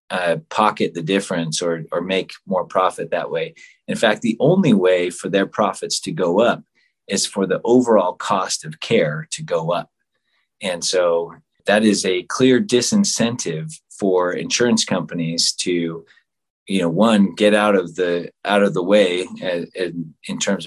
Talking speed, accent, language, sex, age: 170 wpm, American, English, male, 30-49